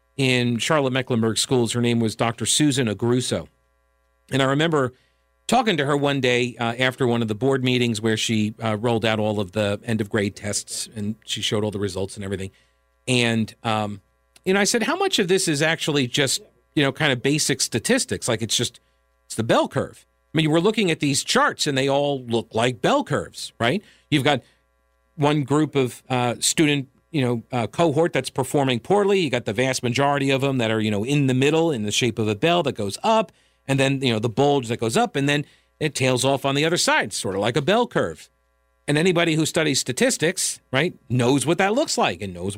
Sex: male